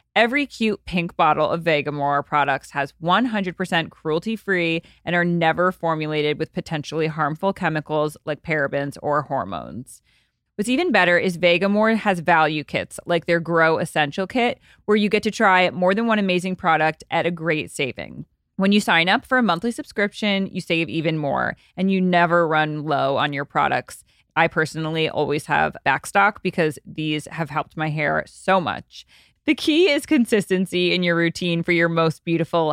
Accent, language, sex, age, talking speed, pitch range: American, English, female, 20-39, 170 wpm, 155-195 Hz